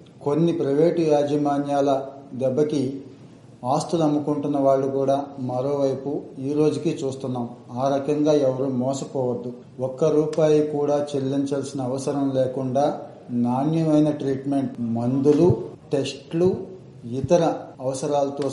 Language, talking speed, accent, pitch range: Telugu, 90 wpm, native, 130-150 Hz